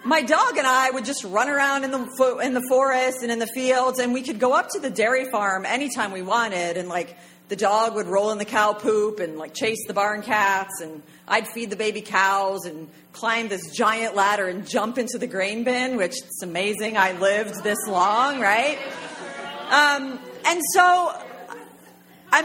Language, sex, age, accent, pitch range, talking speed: English, female, 40-59, American, 185-255 Hz, 200 wpm